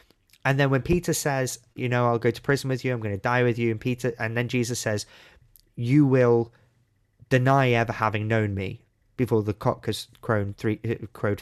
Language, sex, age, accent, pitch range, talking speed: English, male, 20-39, British, 110-135 Hz, 200 wpm